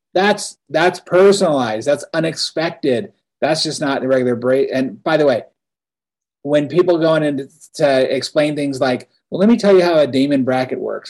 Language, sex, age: English, male, 30-49